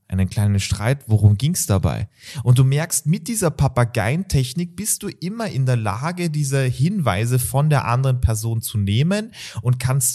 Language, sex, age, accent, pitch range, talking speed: German, male, 30-49, German, 115-150 Hz, 170 wpm